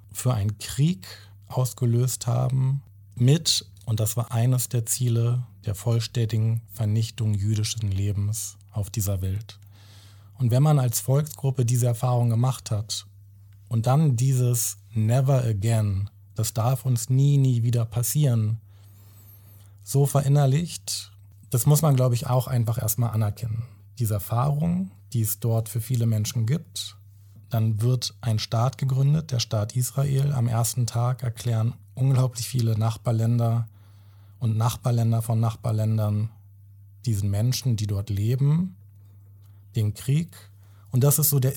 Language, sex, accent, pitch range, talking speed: German, male, German, 105-125 Hz, 135 wpm